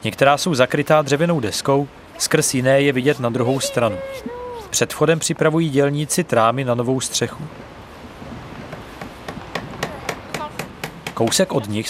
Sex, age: male, 40-59